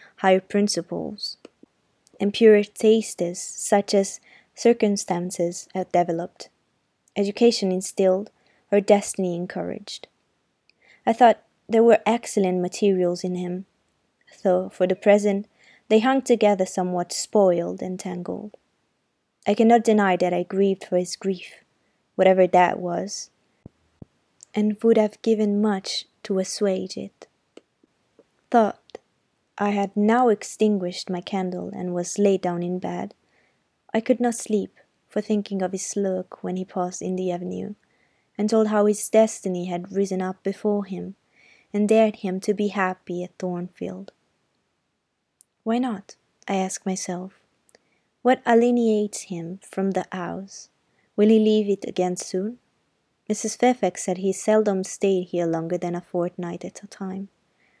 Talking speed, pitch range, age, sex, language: 135 wpm, 185-215 Hz, 20-39, female, Italian